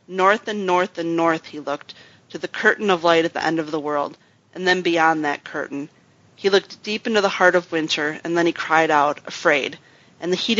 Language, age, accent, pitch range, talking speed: English, 30-49, American, 155-180 Hz, 225 wpm